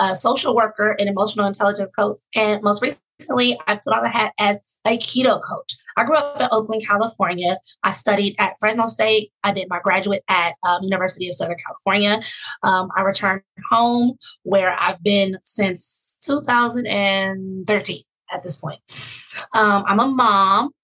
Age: 20-39